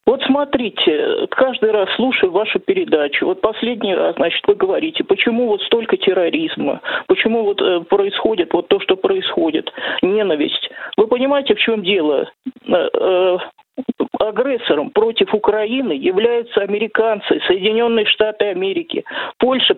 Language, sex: Russian, male